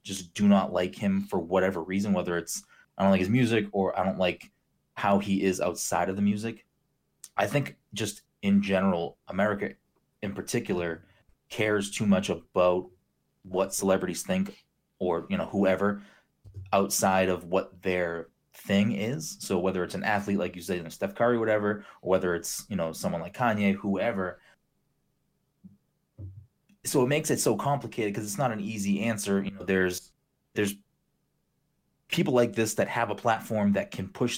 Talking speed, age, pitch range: 175 wpm, 20-39, 90-110 Hz